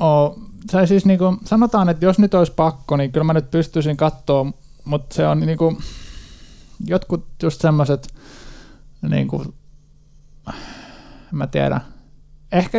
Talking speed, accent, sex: 135 wpm, native, male